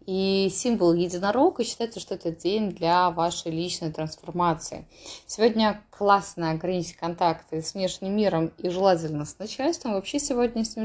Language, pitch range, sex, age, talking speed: Russian, 165-210 Hz, female, 20-39, 145 wpm